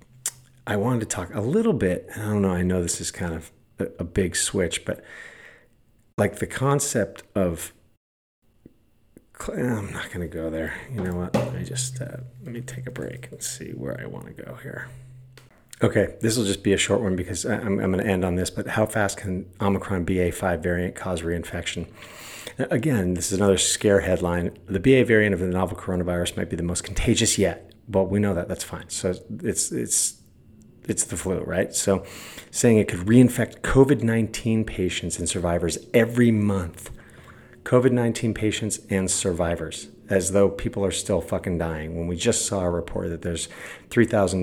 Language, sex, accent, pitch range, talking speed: English, male, American, 90-115 Hz, 190 wpm